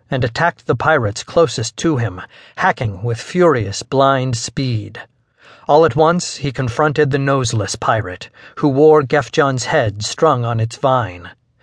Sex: male